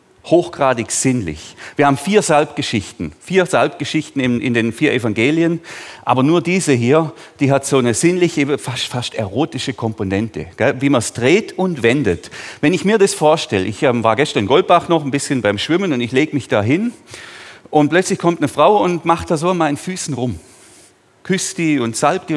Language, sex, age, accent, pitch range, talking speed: German, male, 40-59, German, 130-175 Hz, 195 wpm